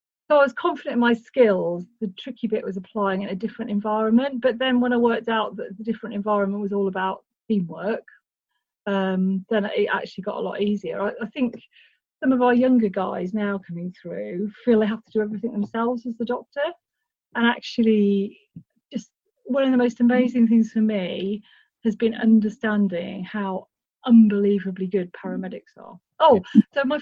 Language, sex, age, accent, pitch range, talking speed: English, female, 40-59, British, 200-245 Hz, 180 wpm